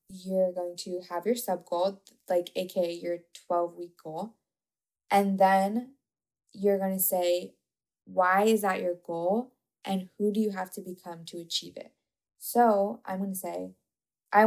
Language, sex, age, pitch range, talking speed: English, female, 10-29, 180-200 Hz, 160 wpm